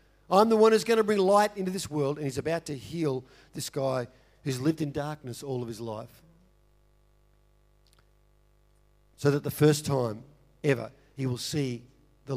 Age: 50-69